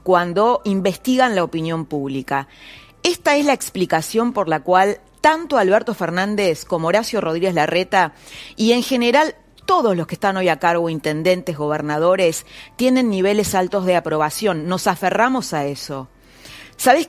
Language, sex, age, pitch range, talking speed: Spanish, female, 30-49, 155-210 Hz, 145 wpm